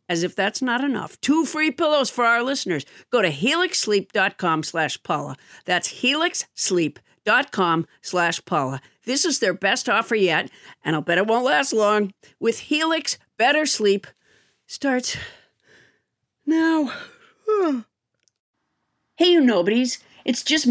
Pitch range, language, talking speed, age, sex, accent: 175-260 Hz, English, 125 wpm, 50-69, female, American